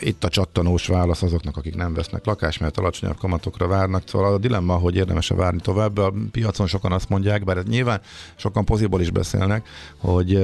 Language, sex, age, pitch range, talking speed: Hungarian, male, 50-69, 85-105 Hz, 185 wpm